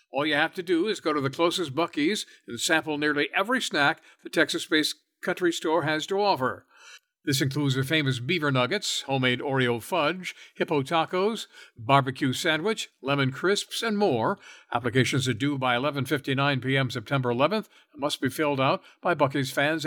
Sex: male